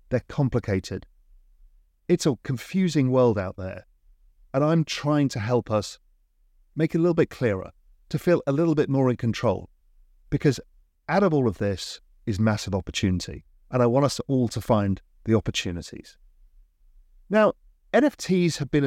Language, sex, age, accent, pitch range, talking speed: English, male, 40-59, British, 90-150 Hz, 160 wpm